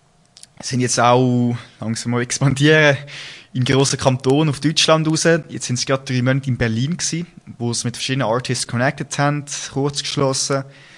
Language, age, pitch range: German, 20-39, 125-145 Hz